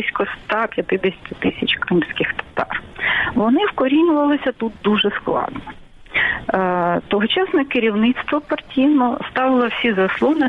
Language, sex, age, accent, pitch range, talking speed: Ukrainian, female, 40-59, native, 195-275 Hz, 85 wpm